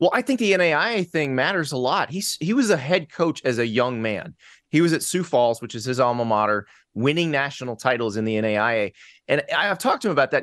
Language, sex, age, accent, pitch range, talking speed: English, male, 20-39, American, 115-155 Hz, 240 wpm